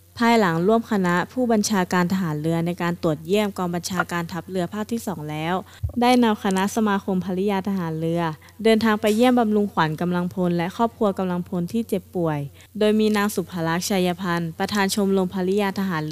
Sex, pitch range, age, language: female, 170-210 Hz, 20-39, Thai